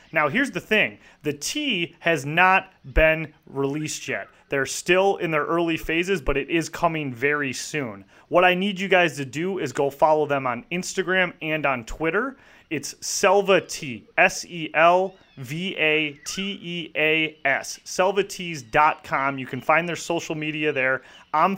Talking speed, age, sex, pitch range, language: 165 wpm, 30-49, male, 135-170 Hz, English